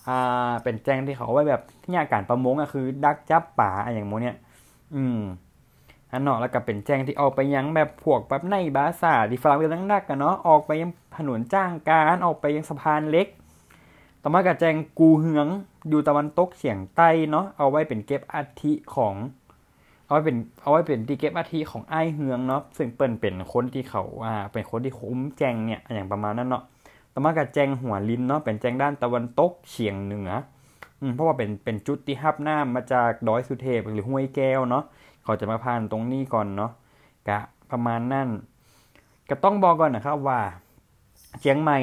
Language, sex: Thai, male